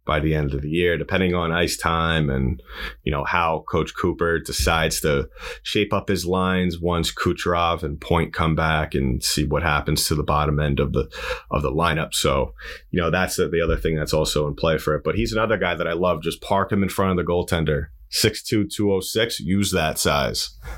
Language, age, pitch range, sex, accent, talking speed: English, 30-49, 75-95 Hz, male, American, 215 wpm